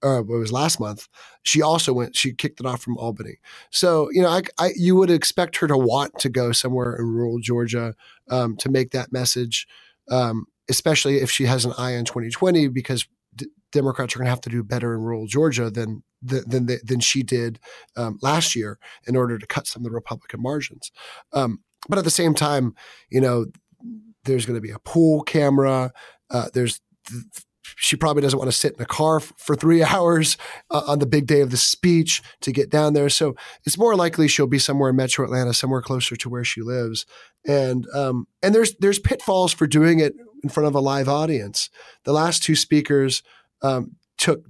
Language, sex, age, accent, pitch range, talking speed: English, male, 30-49, American, 120-150 Hz, 210 wpm